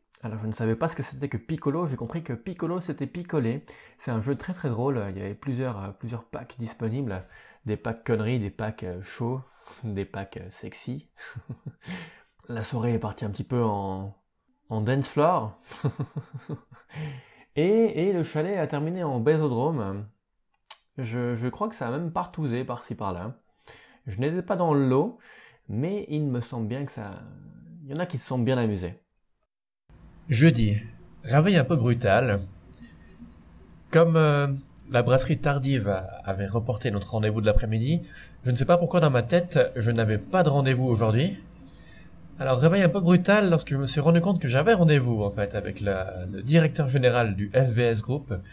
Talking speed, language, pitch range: 175 wpm, French, 100-145 Hz